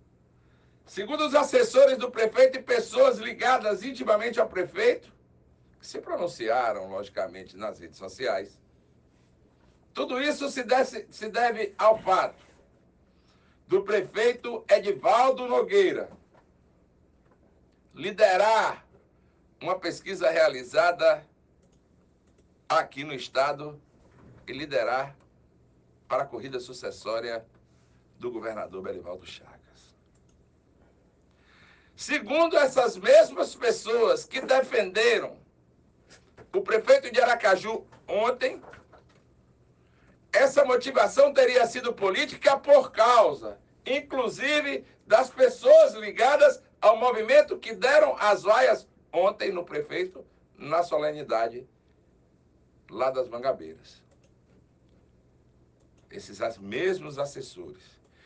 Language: Portuguese